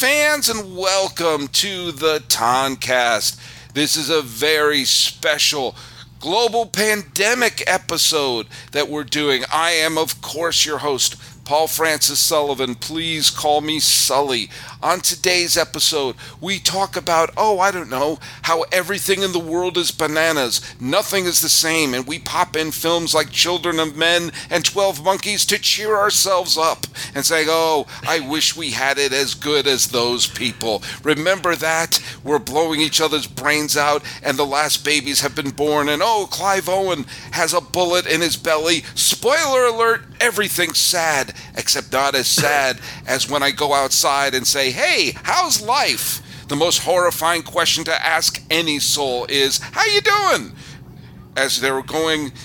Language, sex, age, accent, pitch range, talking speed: English, male, 40-59, American, 140-175 Hz, 160 wpm